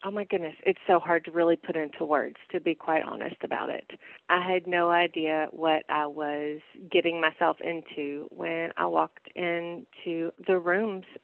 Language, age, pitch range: English, 30-49, 160-190 Hz